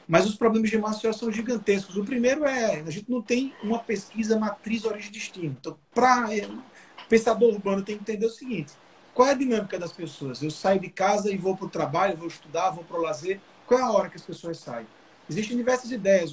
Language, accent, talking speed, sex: Portuguese, Brazilian, 225 wpm, male